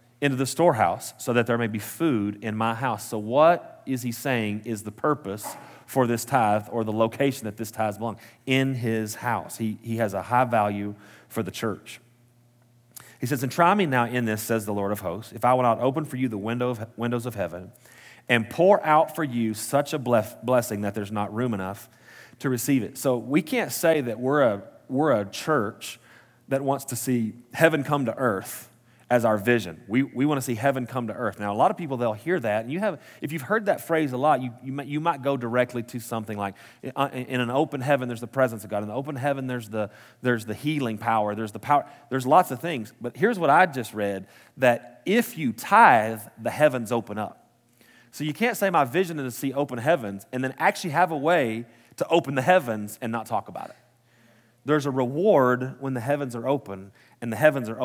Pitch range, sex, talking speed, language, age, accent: 115-140 Hz, male, 230 wpm, English, 30-49, American